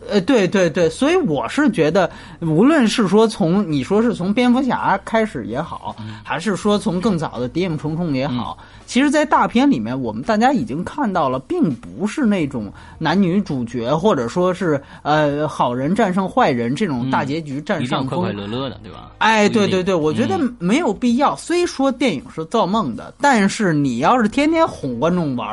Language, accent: French, Chinese